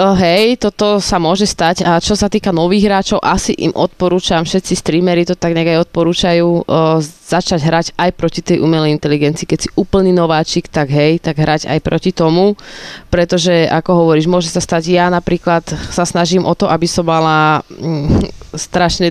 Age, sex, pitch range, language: 20-39, female, 155-180 Hz, Slovak